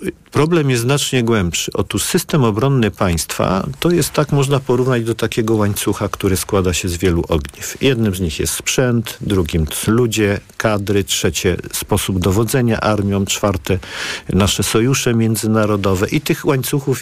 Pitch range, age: 95-130 Hz, 50-69